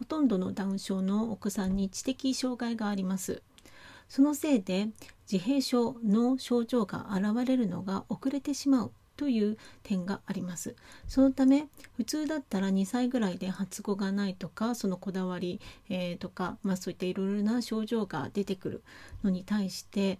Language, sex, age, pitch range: Japanese, female, 40-59, 190-240 Hz